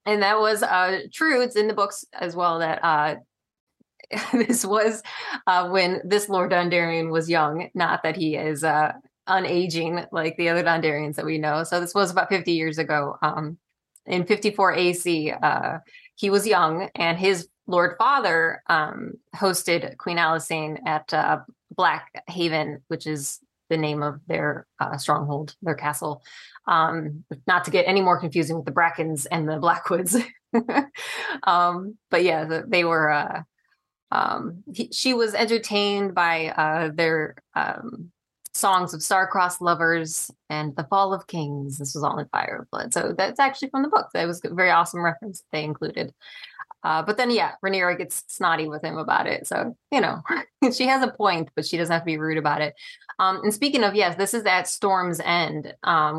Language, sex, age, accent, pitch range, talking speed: English, female, 20-39, American, 155-195 Hz, 175 wpm